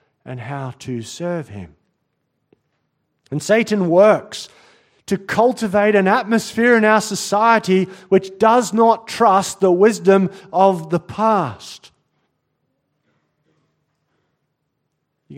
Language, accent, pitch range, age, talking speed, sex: English, Australian, 165-215 Hz, 40-59, 100 wpm, male